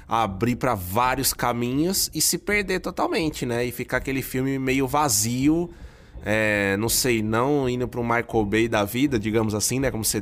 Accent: Brazilian